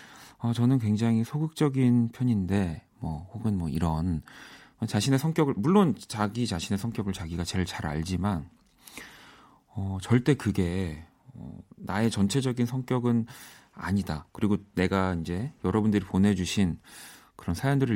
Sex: male